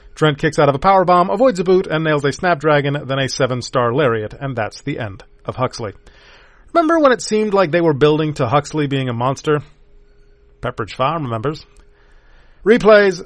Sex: male